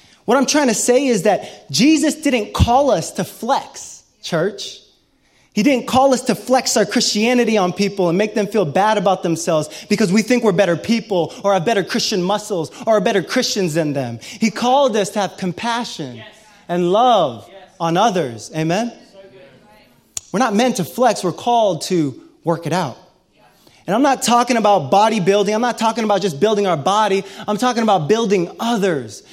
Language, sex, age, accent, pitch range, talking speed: English, male, 20-39, American, 170-230 Hz, 180 wpm